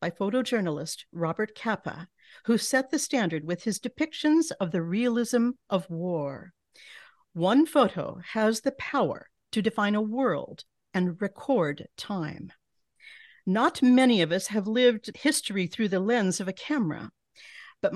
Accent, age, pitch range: American, 50-69, 190-260 Hz